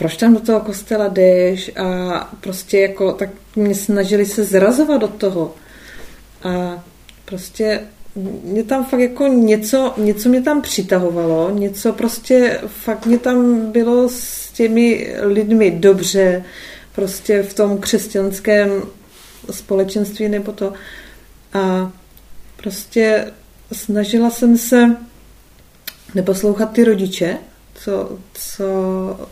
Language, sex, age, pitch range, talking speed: Czech, female, 30-49, 190-220 Hz, 110 wpm